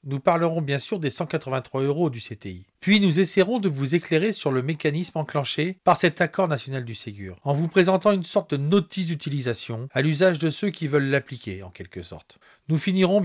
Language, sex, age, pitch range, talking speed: French, male, 40-59, 120-170 Hz, 205 wpm